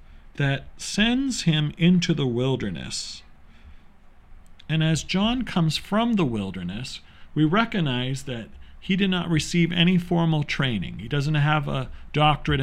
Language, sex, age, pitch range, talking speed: English, male, 40-59, 115-175 Hz, 135 wpm